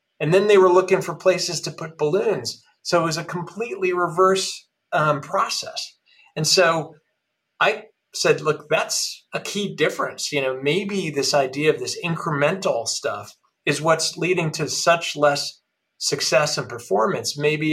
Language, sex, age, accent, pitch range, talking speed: English, male, 40-59, American, 145-180 Hz, 155 wpm